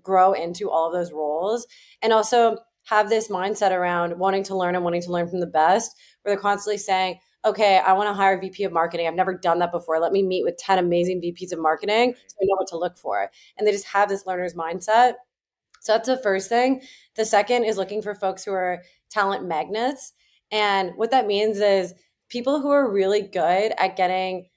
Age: 20-39